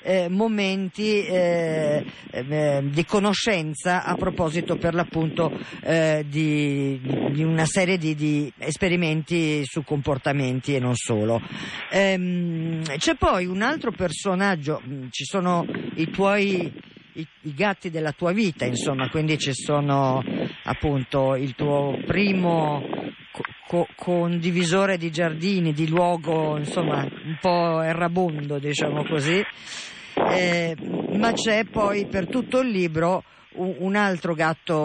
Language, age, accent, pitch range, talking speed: Italian, 50-69, native, 145-180 Hz, 120 wpm